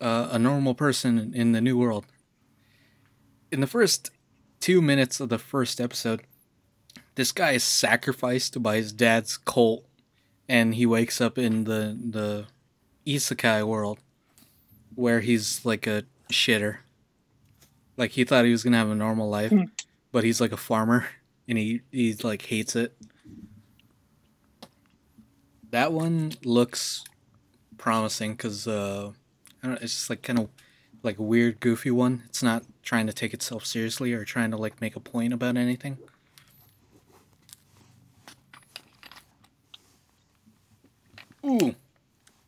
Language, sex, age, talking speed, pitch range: English, male, 20-39, 135 wpm, 110-125 Hz